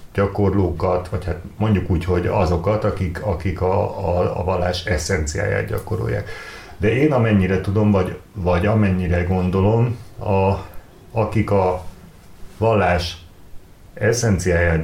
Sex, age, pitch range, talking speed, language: male, 60-79, 90-110 Hz, 115 wpm, Hungarian